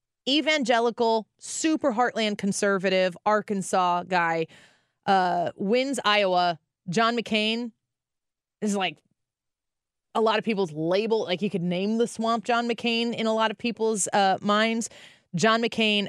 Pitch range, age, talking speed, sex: 180-235 Hz, 30-49, 130 wpm, female